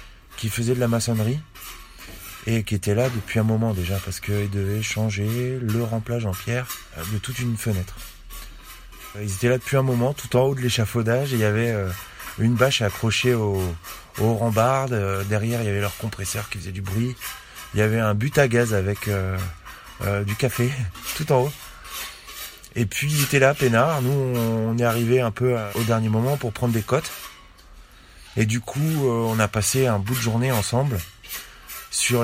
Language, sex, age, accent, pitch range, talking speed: French, male, 20-39, French, 105-125 Hz, 190 wpm